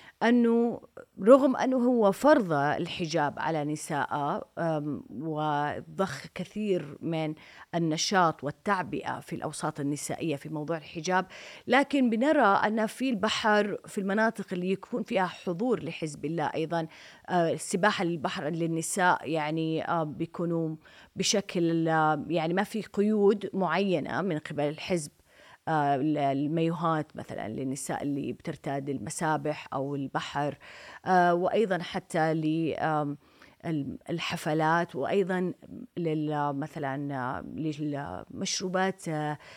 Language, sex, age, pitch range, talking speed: Arabic, female, 30-49, 155-200 Hz, 95 wpm